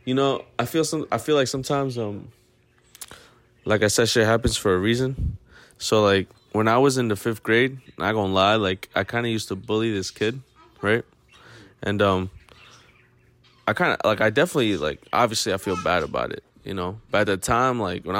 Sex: male